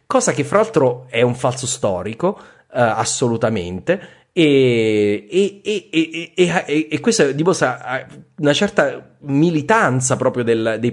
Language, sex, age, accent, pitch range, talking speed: Italian, male, 30-49, native, 110-160 Hz, 145 wpm